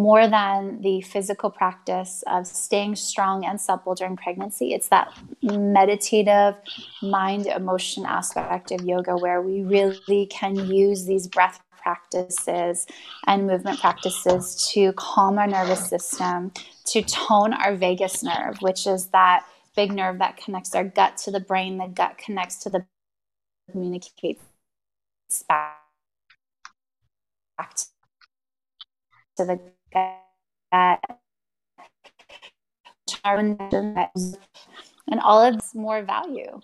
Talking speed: 115 wpm